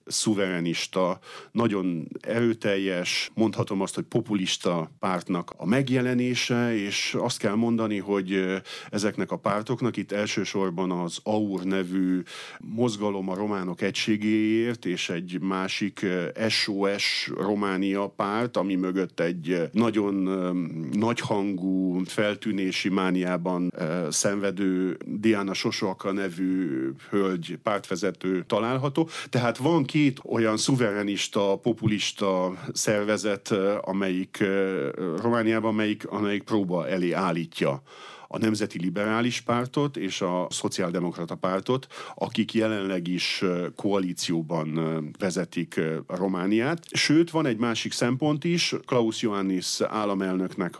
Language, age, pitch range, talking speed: Hungarian, 40-59, 90-115 Hz, 100 wpm